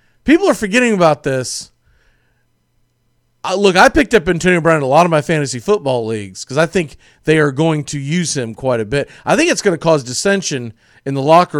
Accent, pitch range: American, 145-205 Hz